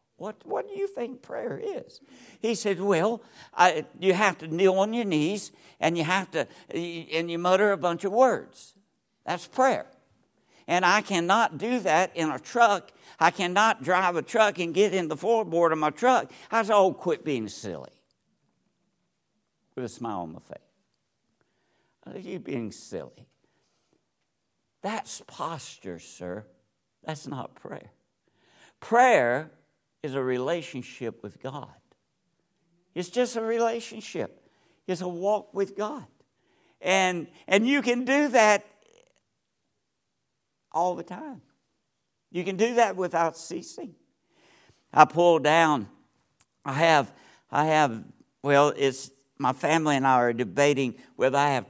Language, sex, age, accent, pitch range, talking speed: English, male, 60-79, American, 145-210 Hz, 140 wpm